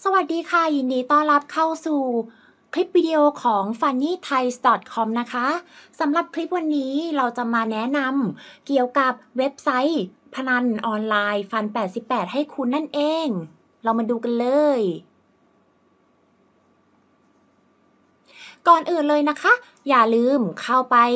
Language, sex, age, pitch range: Thai, female, 20-39, 230-305 Hz